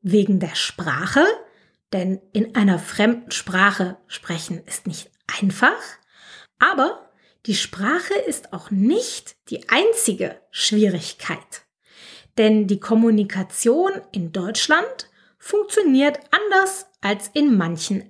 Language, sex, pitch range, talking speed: German, female, 205-345 Hz, 105 wpm